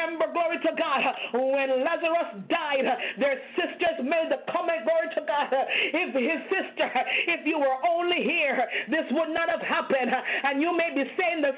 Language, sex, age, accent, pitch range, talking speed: English, female, 40-59, American, 285-345 Hz, 170 wpm